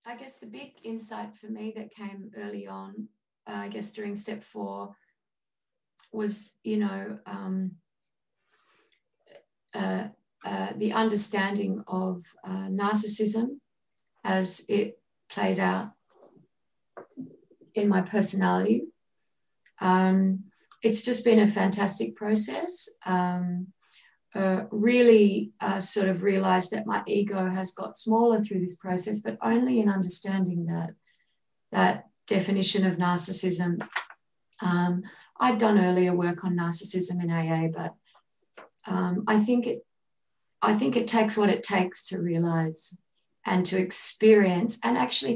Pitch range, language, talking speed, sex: 185-215 Hz, English, 125 wpm, female